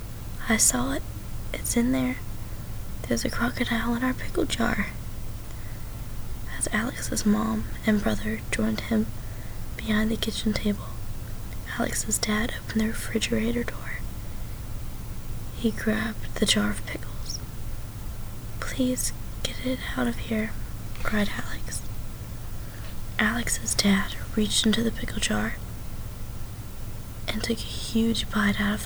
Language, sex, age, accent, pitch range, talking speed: English, female, 20-39, American, 105-115 Hz, 120 wpm